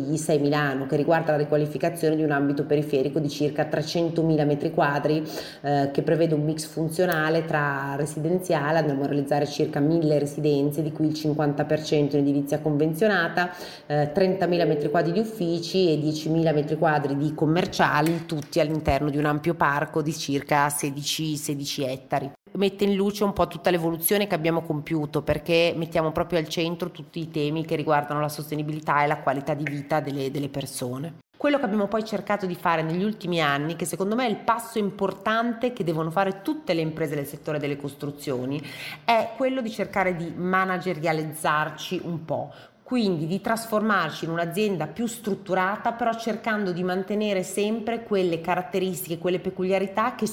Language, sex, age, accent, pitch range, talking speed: Italian, female, 30-49, native, 150-195 Hz, 165 wpm